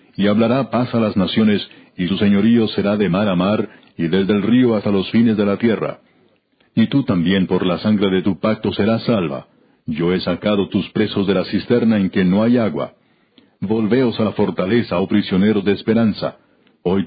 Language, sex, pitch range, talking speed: Spanish, male, 95-115 Hz, 200 wpm